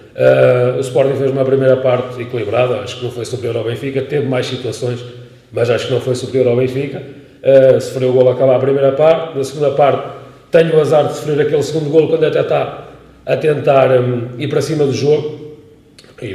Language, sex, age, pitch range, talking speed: Portuguese, male, 40-59, 105-130 Hz, 215 wpm